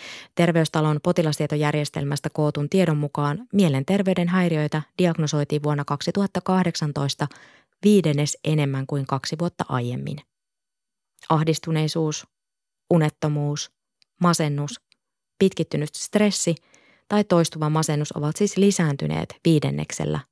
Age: 20-39